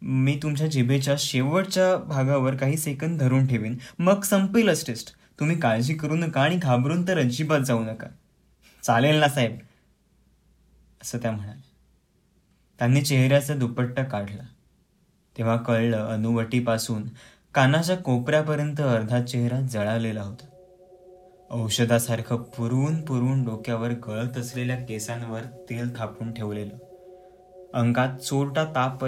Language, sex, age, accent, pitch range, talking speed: Marathi, male, 20-39, native, 115-155 Hz, 115 wpm